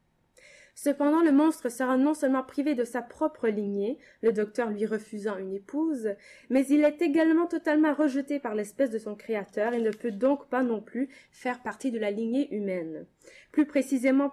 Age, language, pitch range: 20-39, French, 210-265 Hz